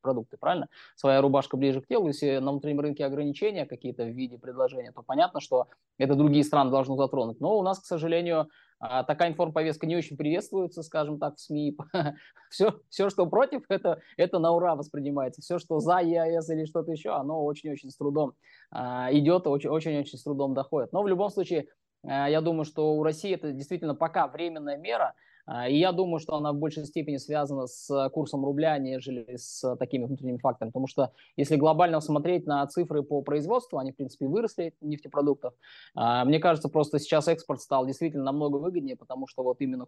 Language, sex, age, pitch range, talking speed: Russian, male, 20-39, 140-165 Hz, 180 wpm